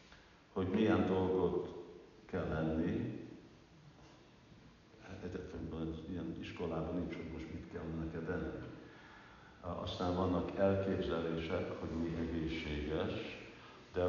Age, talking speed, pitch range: 60-79, 95 wpm, 80-95 Hz